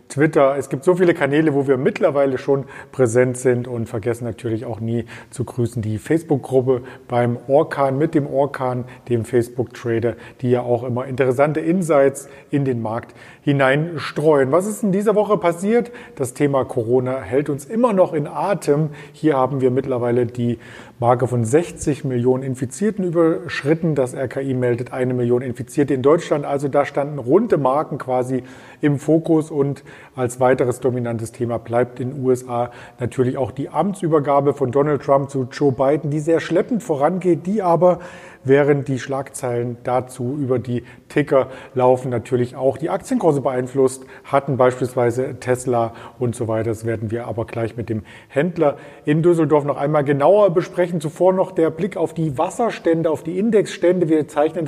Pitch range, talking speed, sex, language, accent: 125-160 Hz, 165 wpm, male, German, German